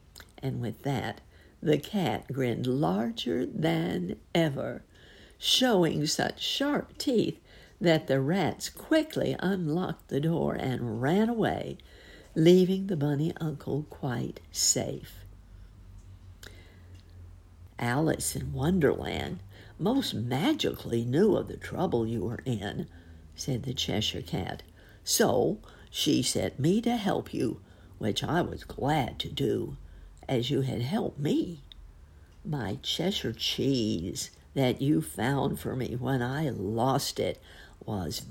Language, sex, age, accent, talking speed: English, female, 60-79, American, 120 wpm